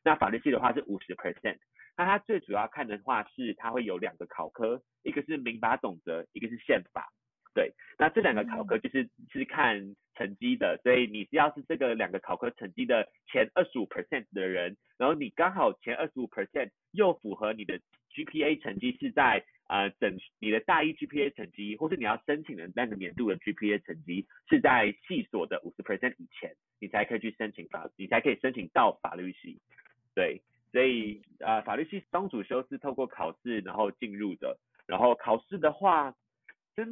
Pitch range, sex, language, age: 105-175 Hz, male, Chinese, 30-49